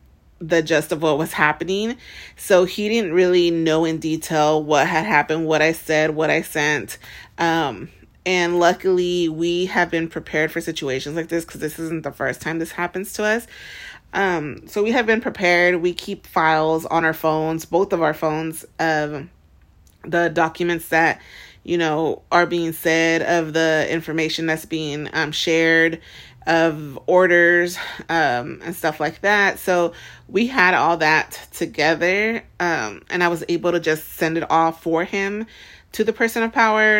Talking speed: 170 wpm